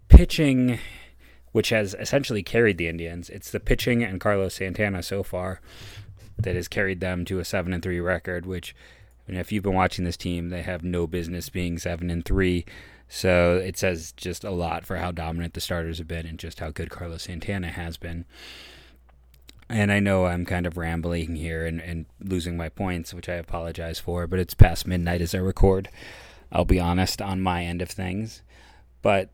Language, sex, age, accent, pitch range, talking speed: English, male, 30-49, American, 85-100 Hz, 190 wpm